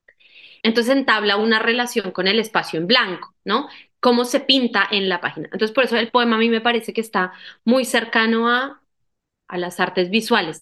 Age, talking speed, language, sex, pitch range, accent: 20-39, 190 wpm, Spanish, female, 190-240 Hz, Colombian